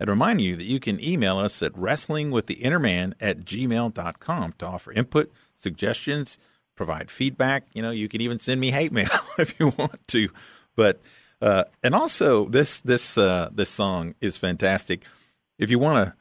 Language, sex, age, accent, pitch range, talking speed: English, male, 50-69, American, 95-115 Hz, 170 wpm